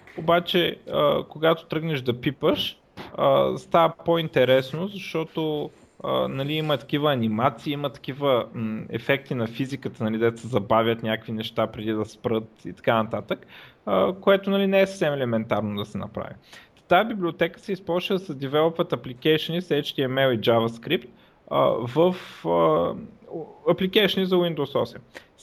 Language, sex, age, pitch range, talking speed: Bulgarian, male, 20-39, 115-170 Hz, 130 wpm